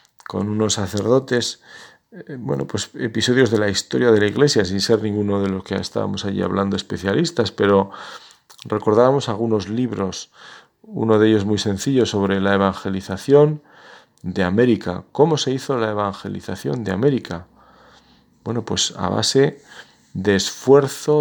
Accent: Spanish